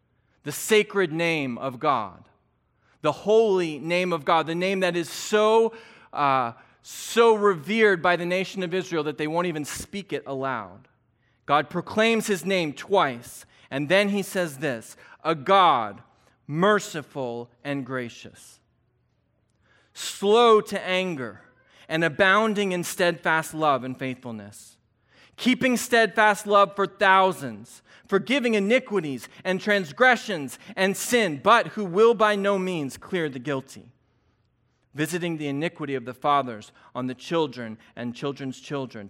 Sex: male